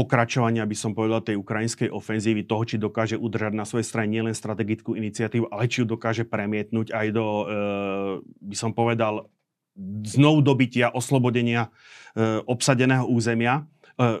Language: Slovak